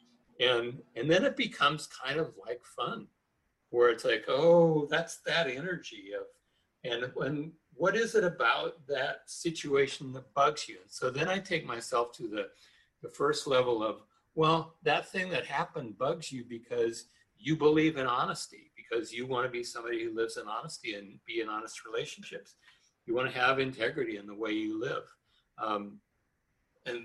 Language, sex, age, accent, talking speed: English, male, 60-79, American, 175 wpm